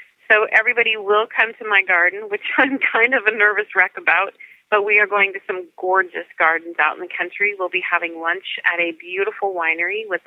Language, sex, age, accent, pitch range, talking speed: English, female, 30-49, American, 170-210 Hz, 210 wpm